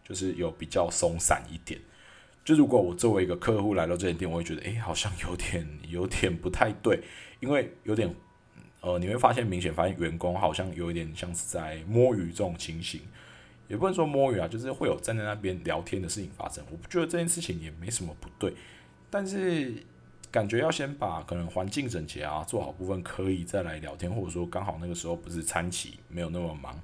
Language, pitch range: Chinese, 85-110 Hz